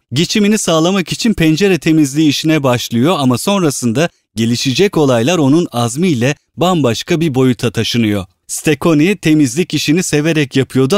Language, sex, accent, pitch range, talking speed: Turkish, male, native, 125-165 Hz, 120 wpm